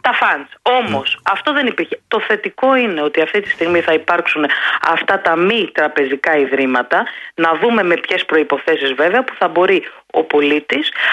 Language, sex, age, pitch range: Greek, female, 30-49, 150-220 Hz